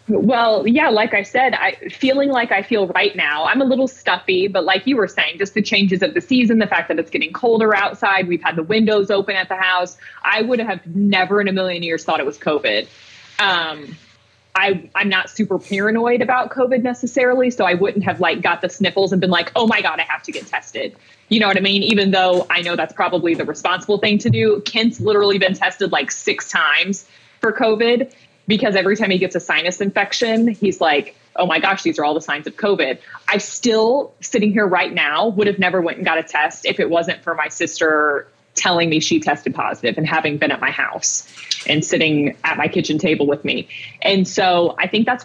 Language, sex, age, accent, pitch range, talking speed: English, female, 20-39, American, 175-220 Hz, 225 wpm